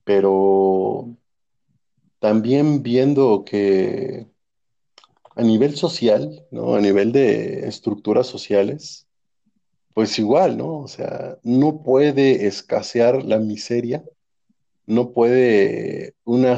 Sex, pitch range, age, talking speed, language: male, 105-140 Hz, 40-59, 95 wpm, Spanish